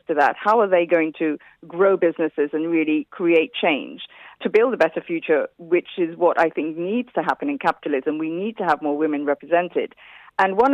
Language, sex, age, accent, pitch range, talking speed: English, female, 40-59, British, 165-215 Hz, 205 wpm